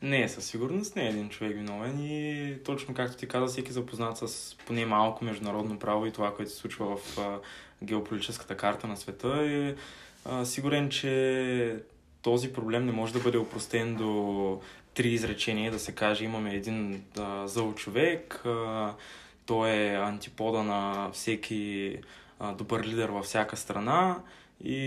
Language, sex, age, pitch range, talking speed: Bulgarian, male, 20-39, 105-125 Hz, 145 wpm